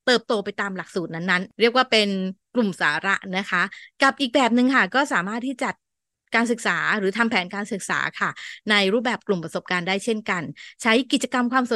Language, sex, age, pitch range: Thai, female, 20-39, 195-245 Hz